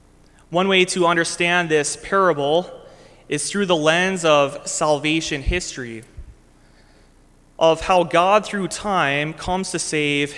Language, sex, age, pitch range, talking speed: English, male, 20-39, 145-175 Hz, 120 wpm